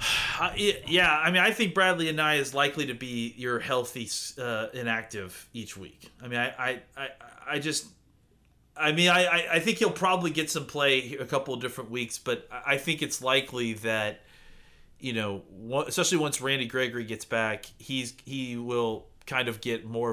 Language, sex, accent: English, male, American